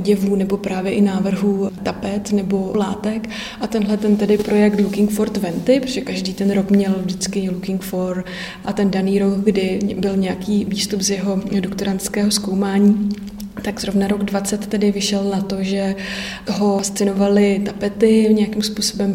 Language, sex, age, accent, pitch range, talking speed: Czech, female, 20-39, native, 195-210 Hz, 155 wpm